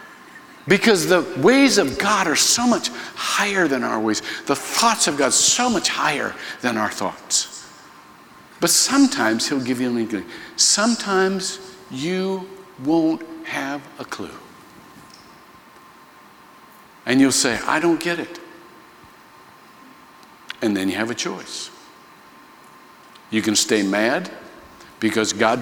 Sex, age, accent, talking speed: male, 60-79, American, 130 wpm